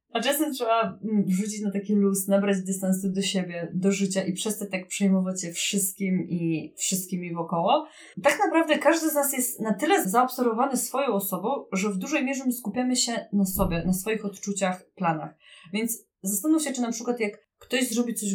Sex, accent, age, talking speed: female, native, 20-39, 185 wpm